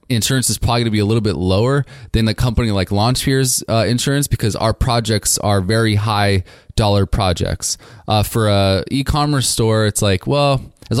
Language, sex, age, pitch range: English, male, 20-39, 100-120 Hz